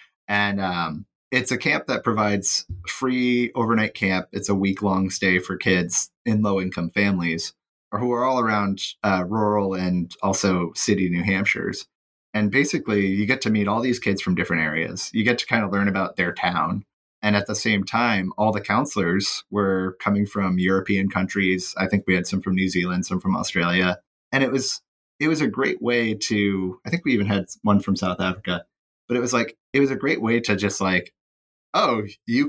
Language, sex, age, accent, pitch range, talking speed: English, male, 30-49, American, 95-115 Hz, 205 wpm